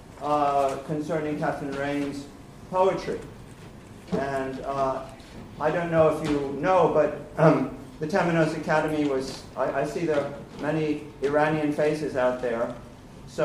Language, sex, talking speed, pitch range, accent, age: English, male, 135 wpm, 130-150 Hz, American, 50-69